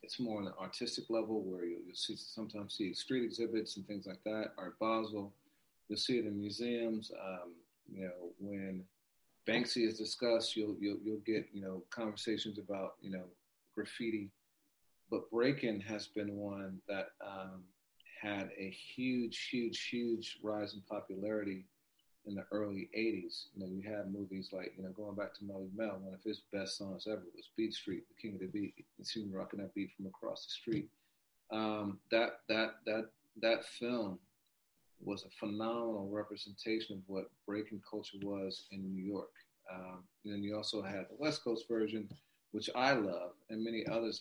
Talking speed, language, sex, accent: 180 wpm, English, male, American